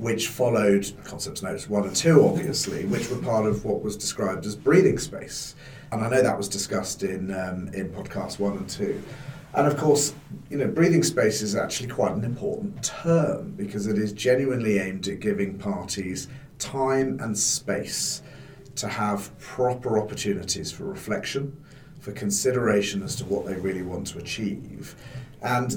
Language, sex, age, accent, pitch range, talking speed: English, male, 40-59, British, 100-140 Hz, 170 wpm